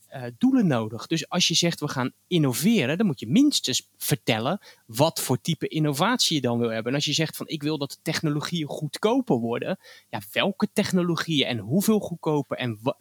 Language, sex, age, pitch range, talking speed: Dutch, male, 20-39, 125-180 Hz, 195 wpm